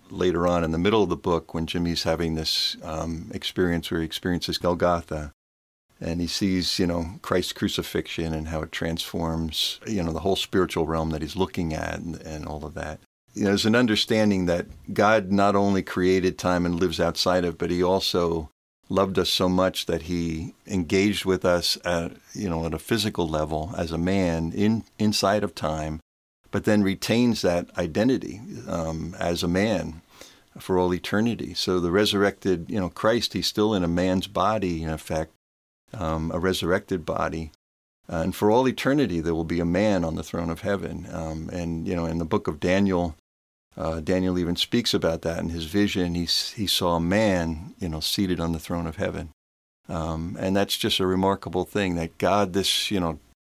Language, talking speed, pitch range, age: English, 195 wpm, 80-95 Hz, 50-69